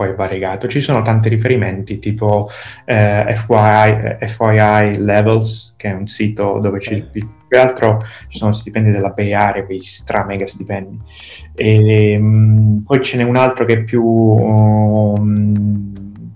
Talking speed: 145 wpm